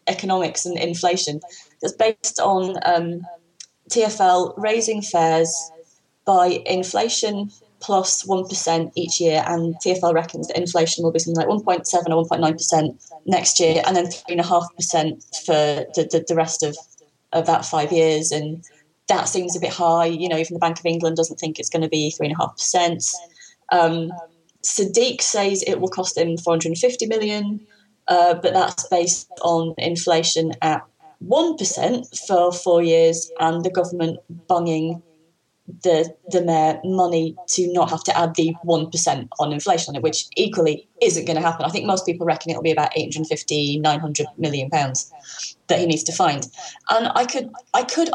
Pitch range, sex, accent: 165-185 Hz, female, British